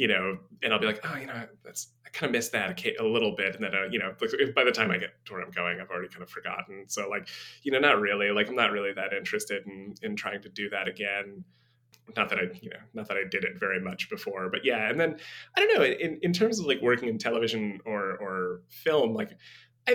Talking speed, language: 270 wpm, English